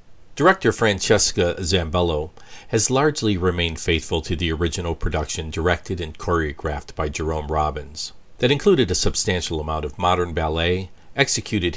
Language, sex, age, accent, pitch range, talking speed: English, male, 50-69, American, 80-100 Hz, 135 wpm